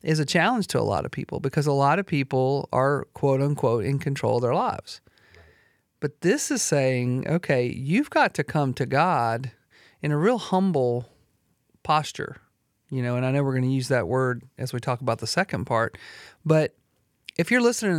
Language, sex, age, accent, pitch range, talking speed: English, male, 40-59, American, 130-160 Hz, 195 wpm